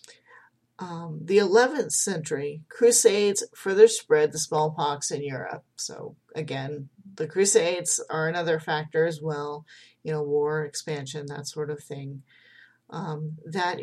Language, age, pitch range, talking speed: English, 40-59, 155-215 Hz, 130 wpm